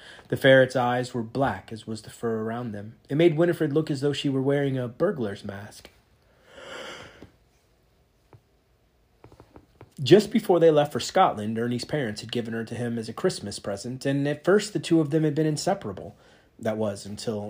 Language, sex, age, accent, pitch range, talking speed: English, male, 30-49, American, 115-145 Hz, 180 wpm